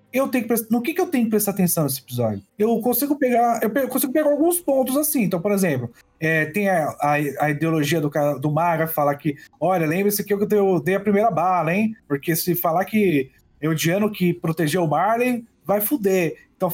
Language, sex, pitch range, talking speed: Portuguese, male, 155-215 Hz, 225 wpm